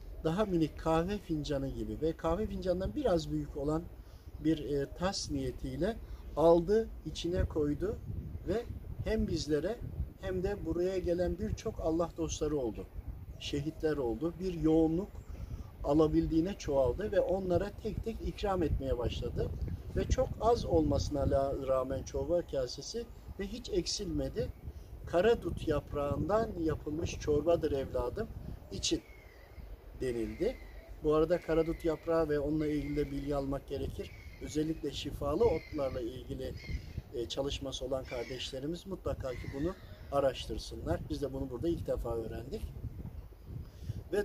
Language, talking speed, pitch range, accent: Turkish, 120 wpm, 115-165 Hz, native